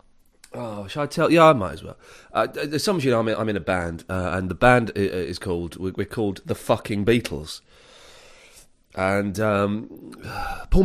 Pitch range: 90-135 Hz